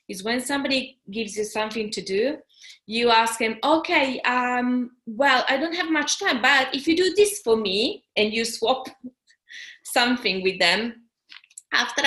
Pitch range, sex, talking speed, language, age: 205-265 Hz, female, 165 wpm, English, 20-39